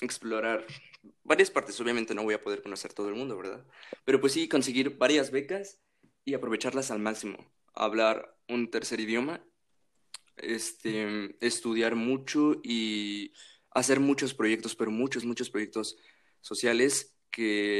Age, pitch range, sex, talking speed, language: 20-39, 110-130 Hz, male, 135 wpm, Spanish